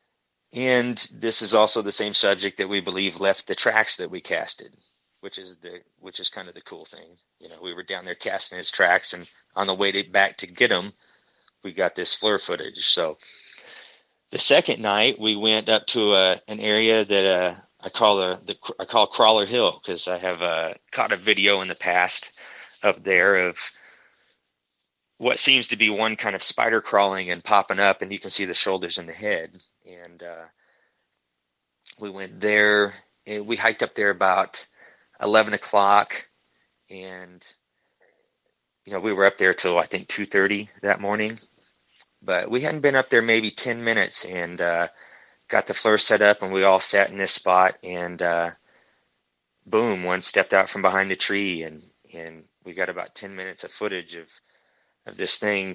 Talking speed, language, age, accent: 190 wpm, English, 30-49, American